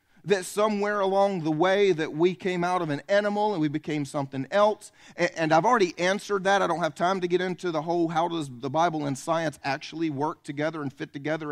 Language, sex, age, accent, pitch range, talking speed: English, male, 40-59, American, 150-200 Hz, 225 wpm